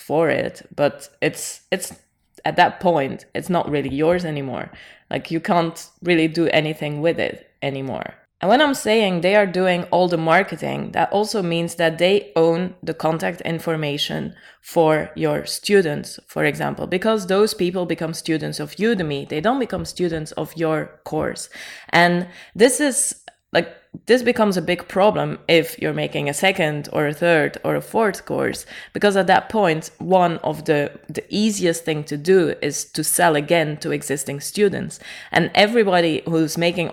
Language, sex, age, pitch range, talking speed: English, female, 20-39, 150-185 Hz, 165 wpm